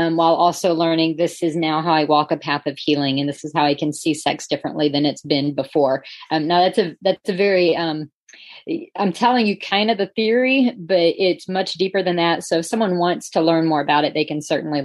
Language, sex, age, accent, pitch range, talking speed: English, female, 40-59, American, 155-200 Hz, 245 wpm